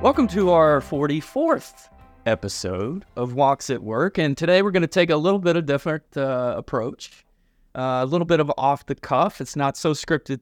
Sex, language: male, English